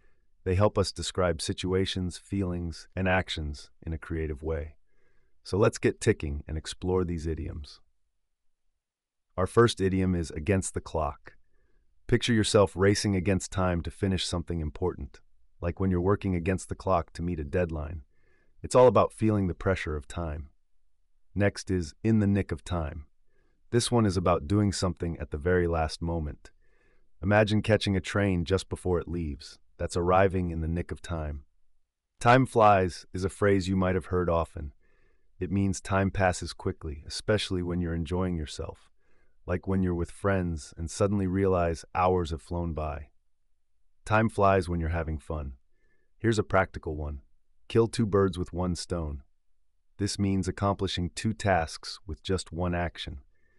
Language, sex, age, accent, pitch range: Japanese, male, 30-49, American, 80-95 Hz